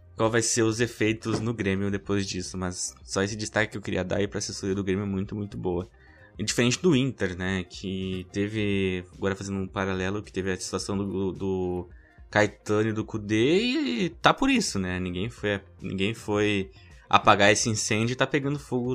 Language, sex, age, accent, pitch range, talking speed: Portuguese, male, 20-39, Brazilian, 100-130 Hz, 200 wpm